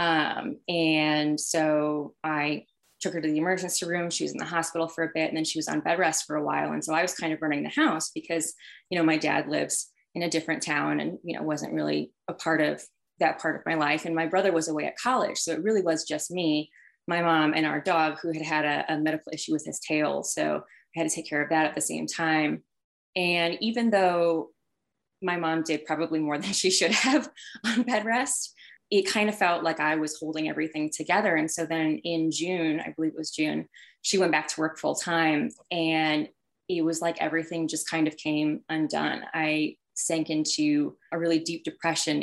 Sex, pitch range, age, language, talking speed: female, 155-175 Hz, 20-39, English, 225 wpm